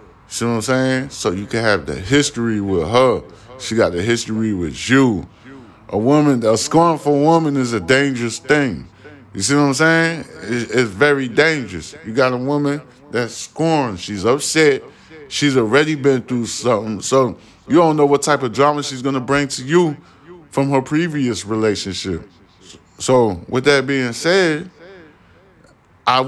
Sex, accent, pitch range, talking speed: male, American, 100-145 Hz, 160 wpm